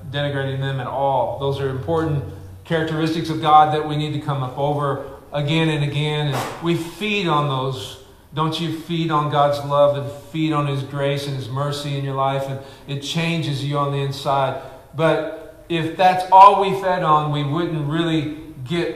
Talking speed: 190 wpm